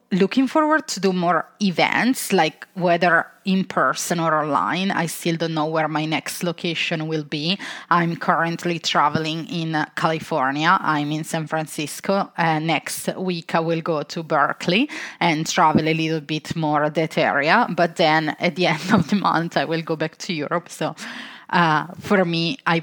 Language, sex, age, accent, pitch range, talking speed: English, female, 20-39, Italian, 160-190 Hz, 175 wpm